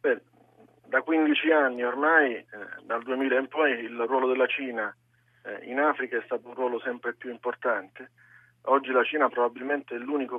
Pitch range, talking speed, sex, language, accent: 115-140 Hz, 175 wpm, male, Italian, native